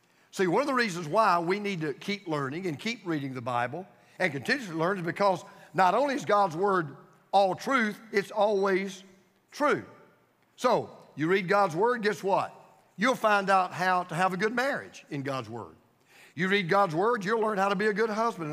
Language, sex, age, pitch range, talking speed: English, male, 50-69, 190-235 Hz, 200 wpm